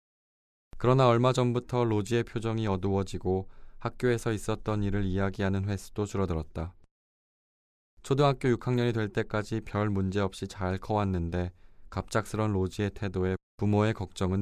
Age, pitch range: 20-39, 90-110 Hz